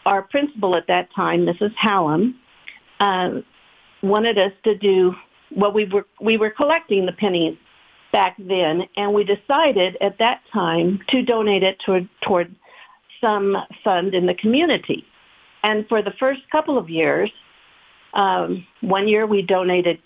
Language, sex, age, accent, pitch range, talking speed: English, female, 50-69, American, 180-220 Hz, 145 wpm